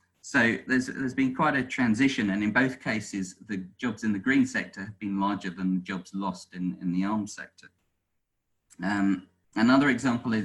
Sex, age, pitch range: male, 40-59, 90-120 Hz